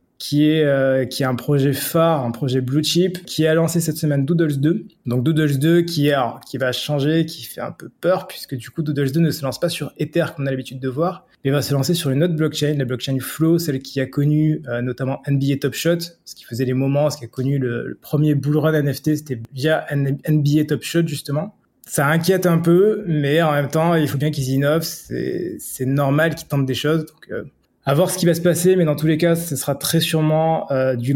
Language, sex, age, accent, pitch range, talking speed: French, male, 20-39, French, 135-165 Hz, 250 wpm